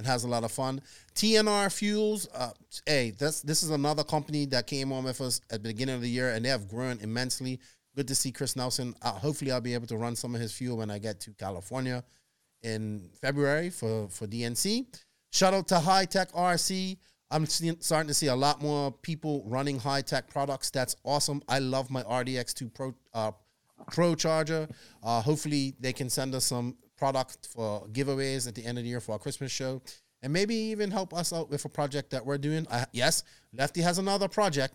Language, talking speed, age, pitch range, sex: English, 210 wpm, 30-49, 120-155 Hz, male